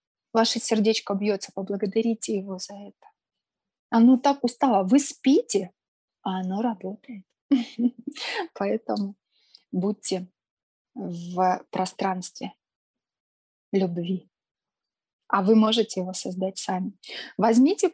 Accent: native